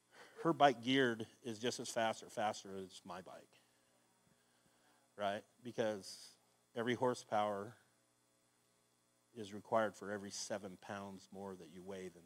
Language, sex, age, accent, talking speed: English, male, 40-59, American, 130 wpm